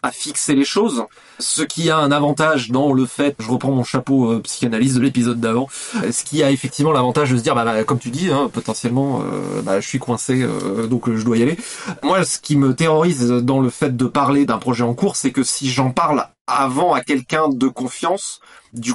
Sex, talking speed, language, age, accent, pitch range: male, 230 wpm, French, 30-49, French, 125-155 Hz